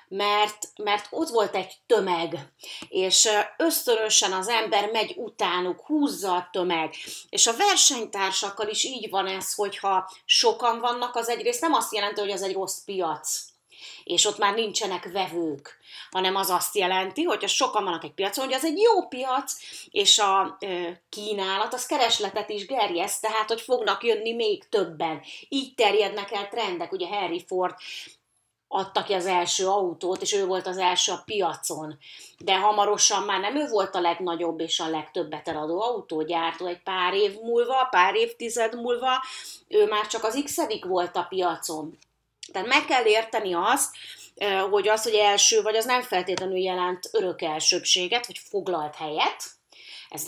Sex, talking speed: female, 160 wpm